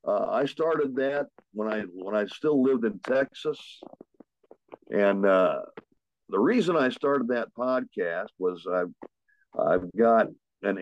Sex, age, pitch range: male, 50-69, 100-145 Hz